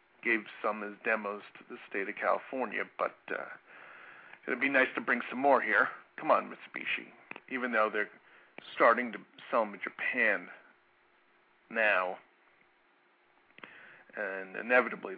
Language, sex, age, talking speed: English, male, 50-69, 135 wpm